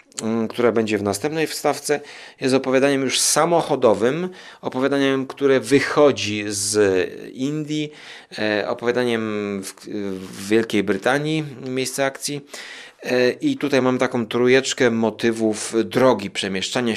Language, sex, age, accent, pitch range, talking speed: Polish, male, 30-49, native, 100-130 Hz, 100 wpm